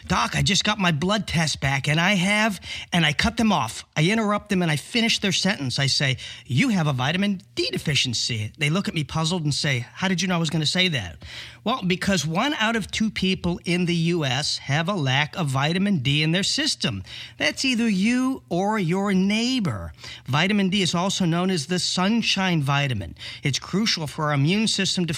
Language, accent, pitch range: English, American, 145-200 Hz